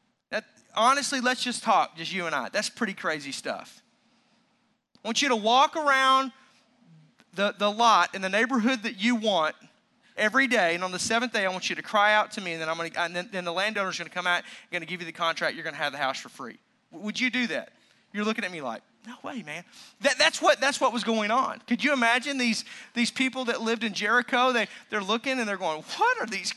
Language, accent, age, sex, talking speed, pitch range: English, American, 30-49, male, 240 wpm, 175-245 Hz